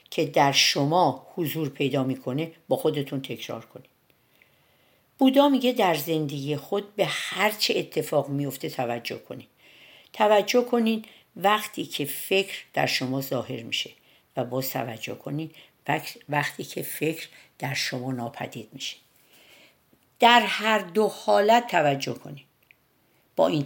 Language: Persian